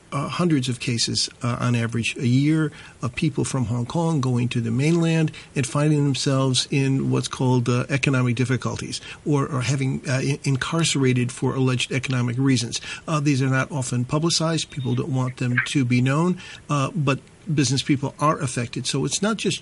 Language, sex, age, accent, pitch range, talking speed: English, male, 50-69, American, 125-150 Hz, 180 wpm